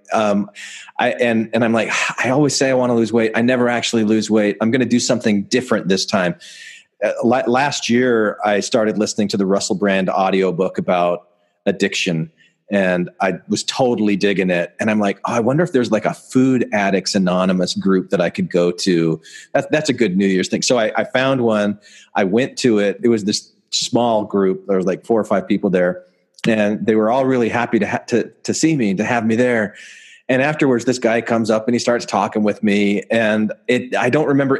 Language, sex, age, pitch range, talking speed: English, male, 30-49, 105-125 Hz, 220 wpm